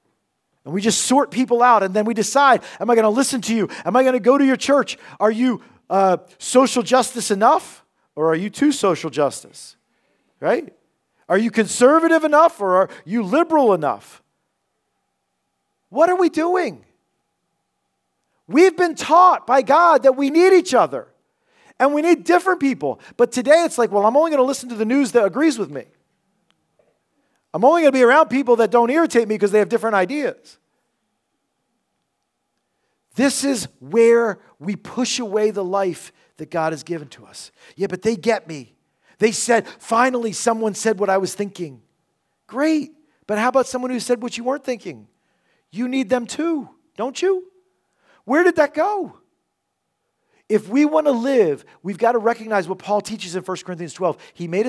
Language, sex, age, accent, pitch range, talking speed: English, male, 40-59, American, 200-280 Hz, 180 wpm